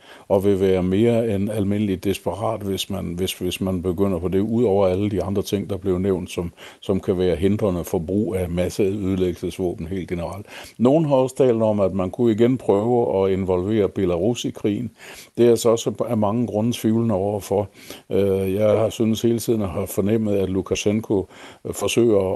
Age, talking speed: 60-79, 190 wpm